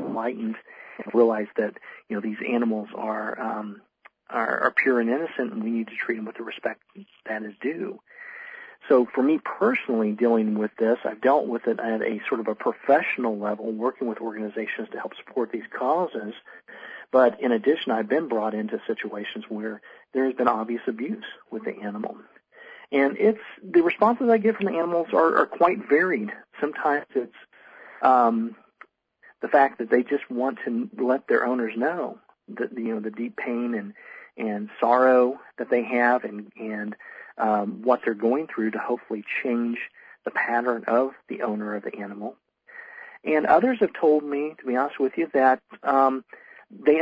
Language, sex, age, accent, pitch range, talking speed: English, male, 40-59, American, 110-145 Hz, 180 wpm